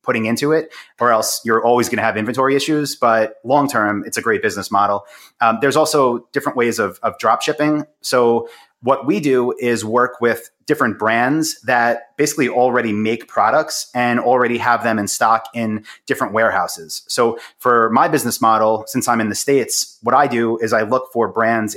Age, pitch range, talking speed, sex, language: 30-49, 110-125 Hz, 190 wpm, male, English